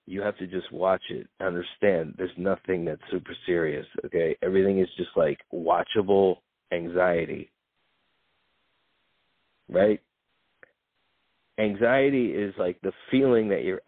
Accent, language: American, English